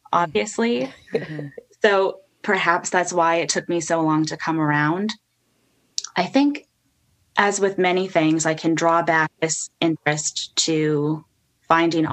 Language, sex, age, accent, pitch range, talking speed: English, female, 10-29, American, 155-175 Hz, 135 wpm